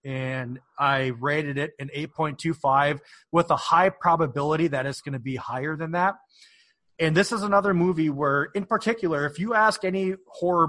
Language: English